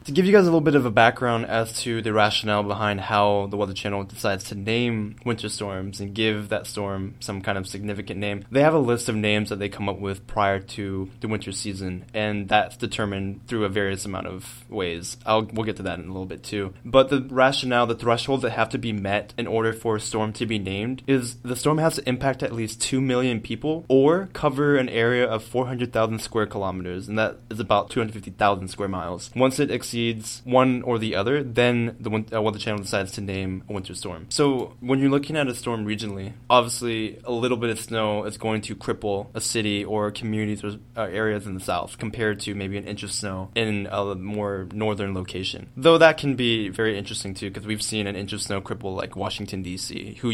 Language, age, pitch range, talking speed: English, 20-39, 100-120 Hz, 225 wpm